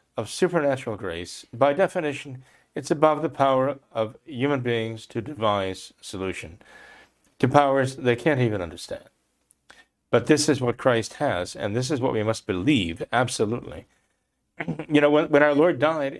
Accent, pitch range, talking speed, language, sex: American, 125-170 Hz, 155 wpm, English, male